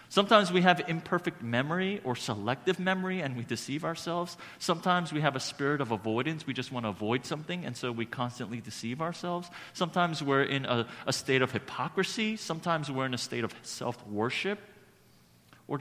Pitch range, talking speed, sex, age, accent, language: 110-160 Hz, 180 wpm, male, 40-59, American, English